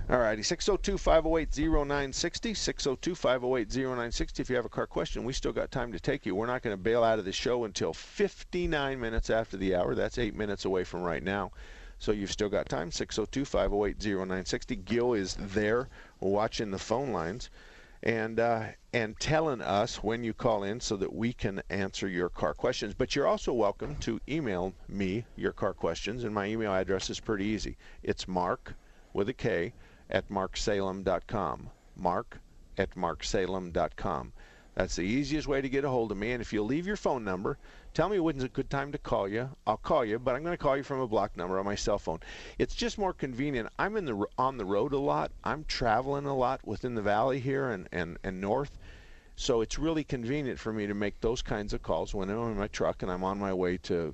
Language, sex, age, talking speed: English, male, 50-69, 215 wpm